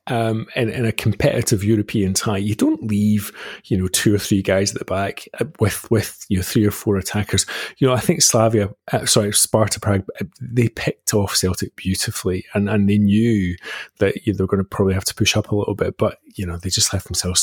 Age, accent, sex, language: 30-49, British, male, English